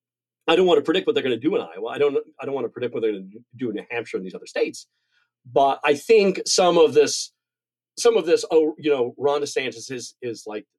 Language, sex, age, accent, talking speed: English, male, 40-59, American, 265 wpm